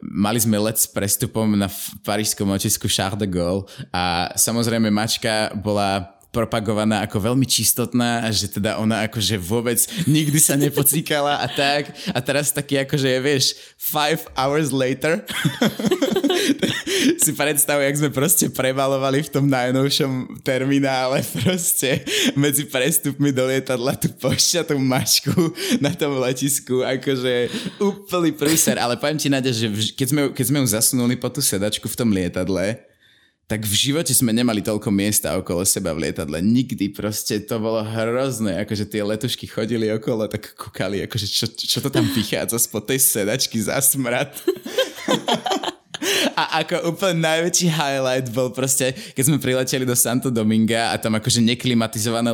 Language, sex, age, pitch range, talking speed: Slovak, male, 20-39, 110-145 Hz, 150 wpm